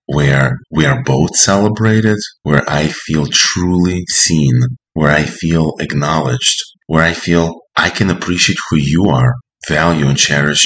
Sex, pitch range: male, 75-90 Hz